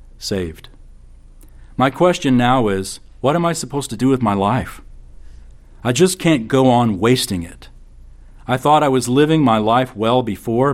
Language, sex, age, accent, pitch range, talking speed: English, male, 40-59, American, 90-125 Hz, 170 wpm